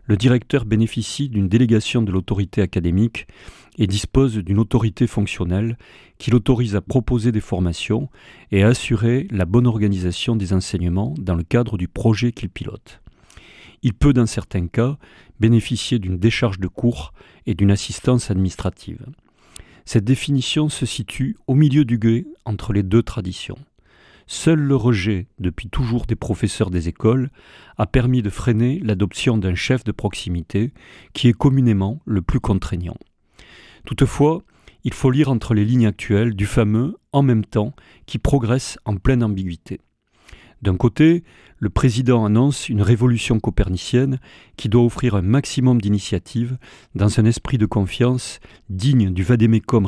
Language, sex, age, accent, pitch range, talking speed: French, male, 40-59, French, 100-125 Hz, 150 wpm